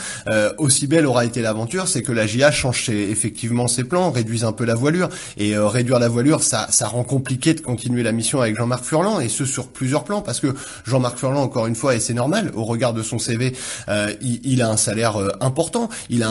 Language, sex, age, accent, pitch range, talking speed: French, male, 20-39, French, 115-140 Hz, 240 wpm